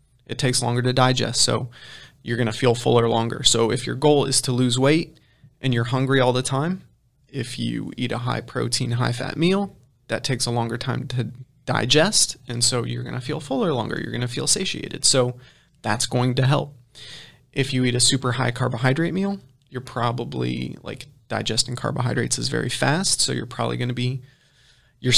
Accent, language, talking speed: American, English, 190 wpm